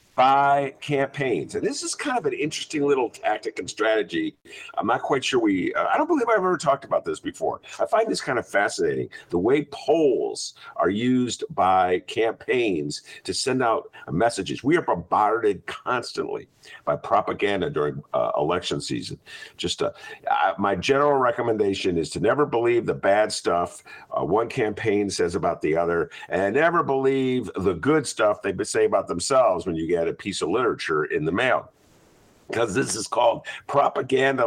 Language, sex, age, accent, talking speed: English, male, 50-69, American, 170 wpm